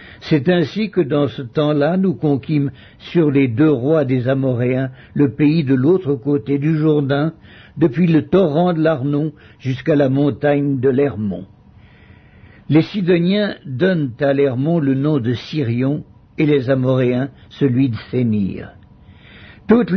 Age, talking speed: 60-79, 140 wpm